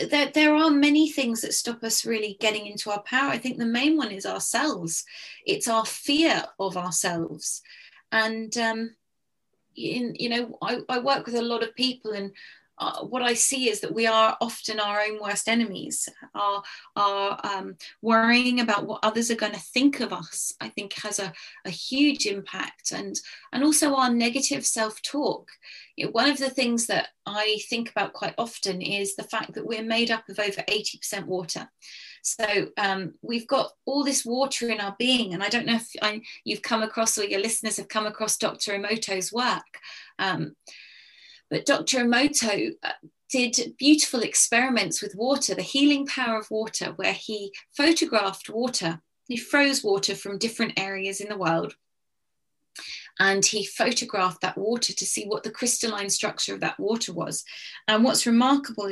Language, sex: English, female